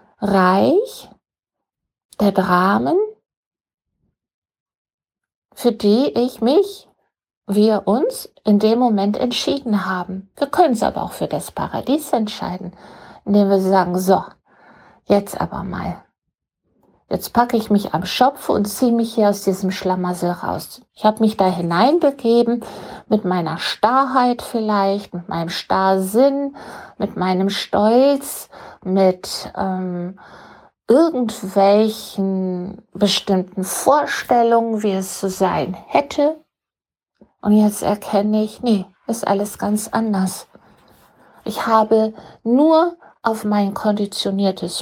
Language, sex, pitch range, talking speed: German, female, 195-245 Hz, 110 wpm